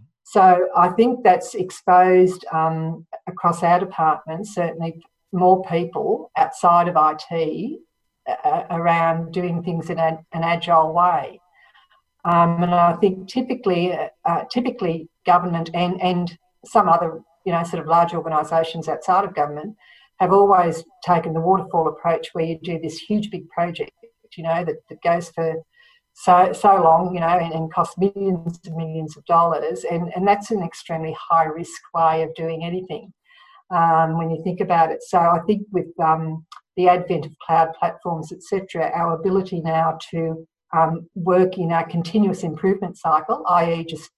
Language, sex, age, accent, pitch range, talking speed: English, female, 50-69, Australian, 165-185 Hz, 160 wpm